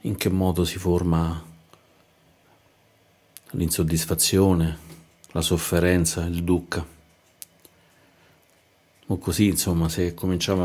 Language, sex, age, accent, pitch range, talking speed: Italian, male, 40-59, native, 90-95 Hz, 85 wpm